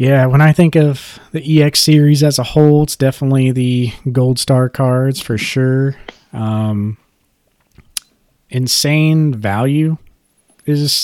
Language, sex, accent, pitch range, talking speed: English, male, American, 110-130 Hz, 125 wpm